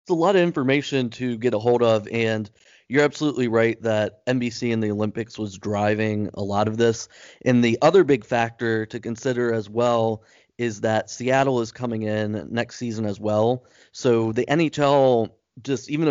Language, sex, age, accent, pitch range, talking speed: English, male, 20-39, American, 110-120 Hz, 185 wpm